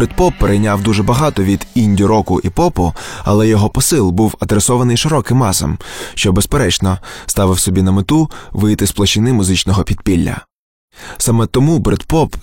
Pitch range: 100-130 Hz